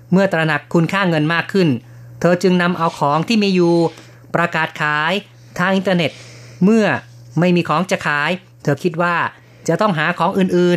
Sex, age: female, 30-49